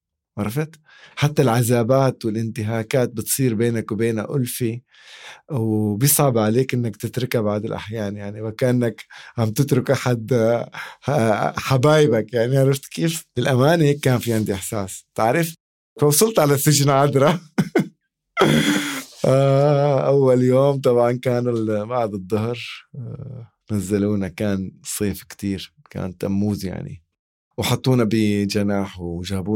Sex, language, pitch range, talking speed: male, Arabic, 100-130 Hz, 100 wpm